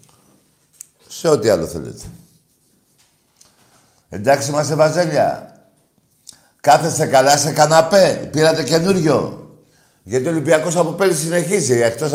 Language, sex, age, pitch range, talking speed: Greek, male, 60-79, 105-155 Hz, 100 wpm